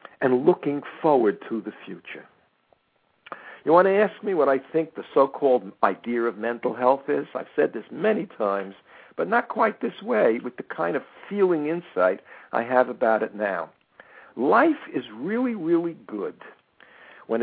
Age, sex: 60-79, male